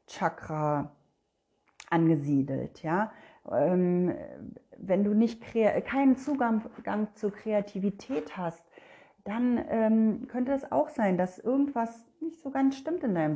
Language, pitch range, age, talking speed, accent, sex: German, 170-230 Hz, 40-59, 115 wpm, German, female